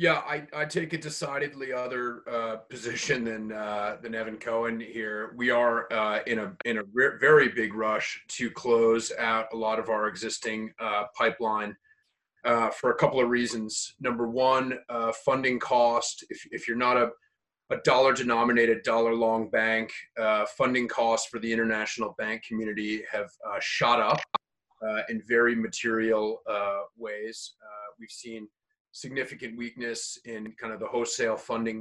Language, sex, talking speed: English, male, 160 wpm